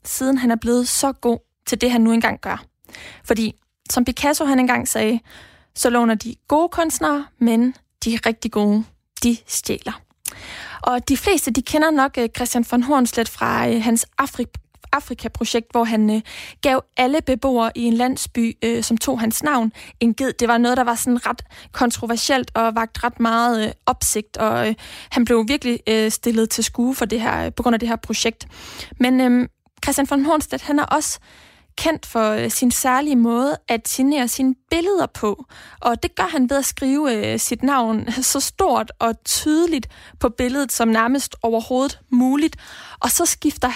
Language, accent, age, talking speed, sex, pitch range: Danish, native, 20-39, 165 wpm, female, 230-275 Hz